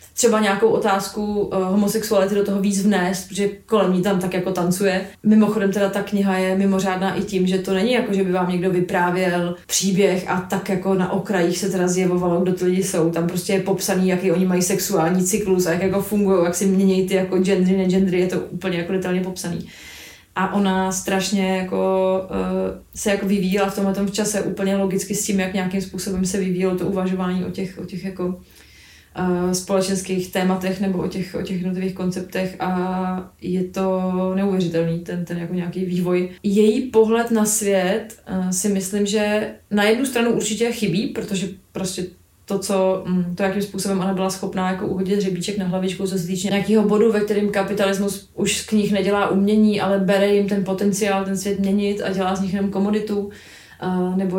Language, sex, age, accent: Czech, female, 20-39, native